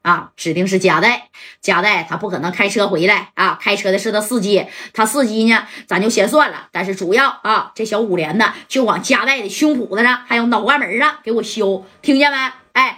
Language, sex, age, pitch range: Chinese, female, 20-39, 200-265 Hz